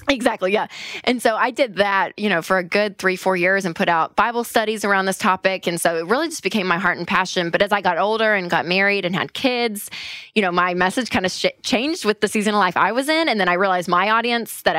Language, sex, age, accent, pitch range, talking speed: English, female, 20-39, American, 175-215 Hz, 270 wpm